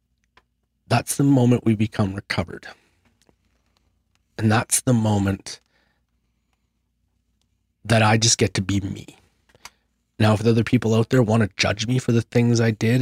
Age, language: 30-49, English